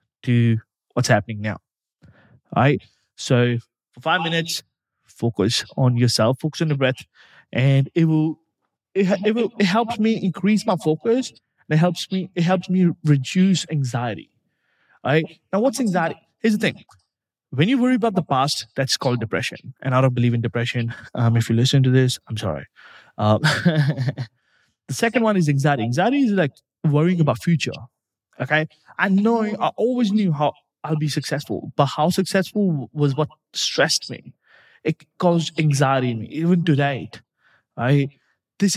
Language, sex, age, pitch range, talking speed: English, male, 20-39, 130-185 Hz, 165 wpm